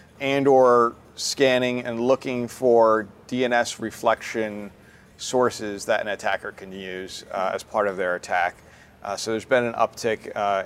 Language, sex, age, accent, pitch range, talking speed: English, male, 40-59, American, 105-120 Hz, 150 wpm